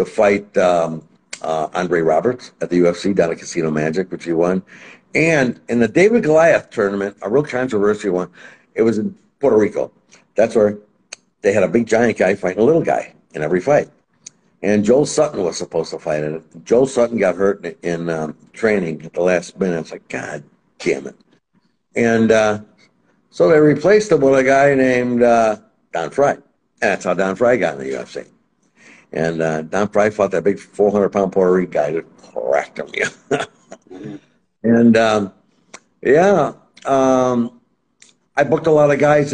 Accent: American